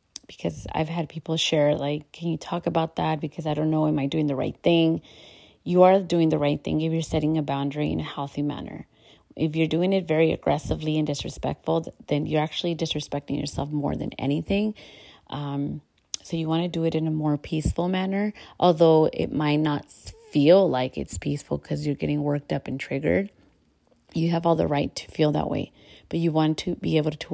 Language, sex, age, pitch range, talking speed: English, female, 30-49, 145-165 Hz, 210 wpm